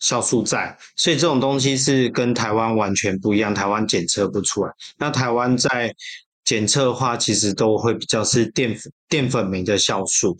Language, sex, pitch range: Chinese, male, 100-125 Hz